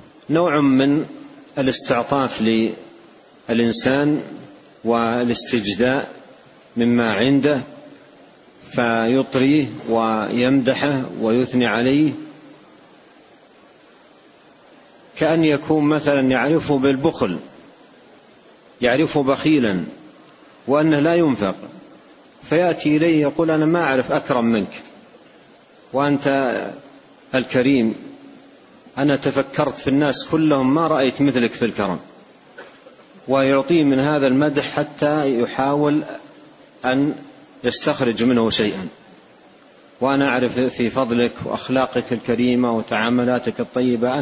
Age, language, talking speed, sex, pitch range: 40-59, Arabic, 80 wpm, male, 120-150 Hz